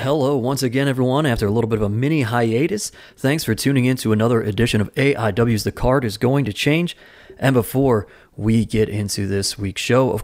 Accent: American